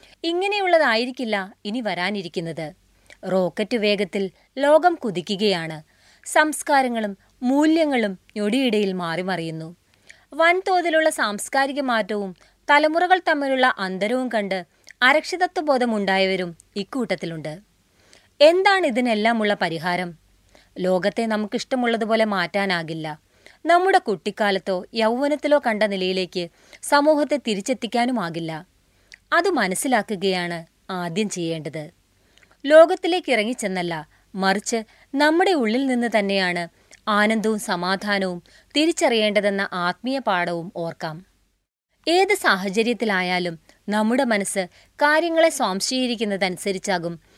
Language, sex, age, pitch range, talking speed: Malayalam, female, 30-49, 185-270 Hz, 70 wpm